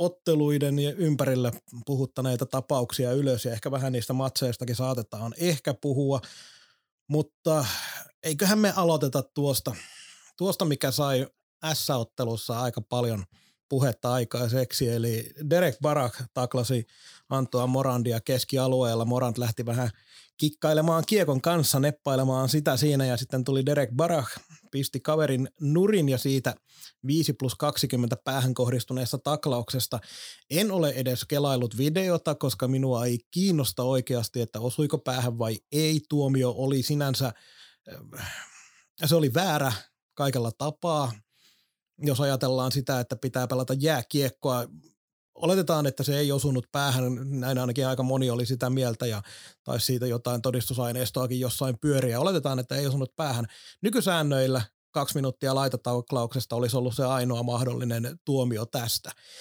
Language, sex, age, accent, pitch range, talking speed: Finnish, male, 30-49, native, 125-150 Hz, 125 wpm